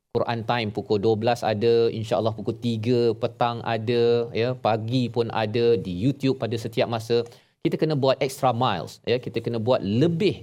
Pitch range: 110-125 Hz